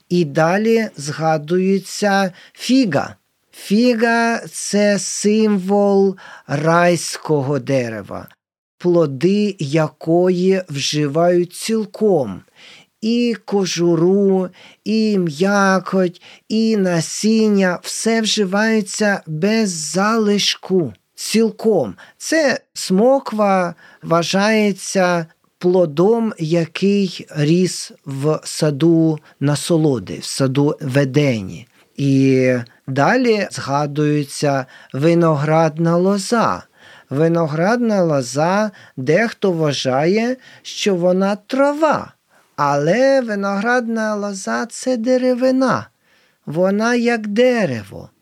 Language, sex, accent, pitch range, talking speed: Ukrainian, male, native, 155-220 Hz, 75 wpm